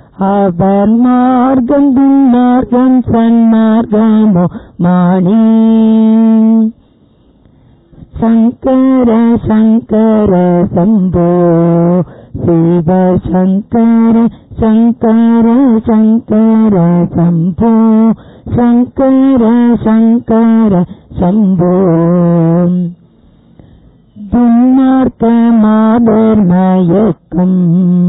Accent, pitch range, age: native, 180-230 Hz, 50-69